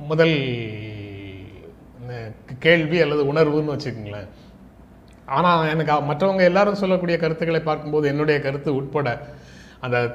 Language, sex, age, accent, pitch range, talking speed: Tamil, male, 30-49, native, 120-155 Hz, 95 wpm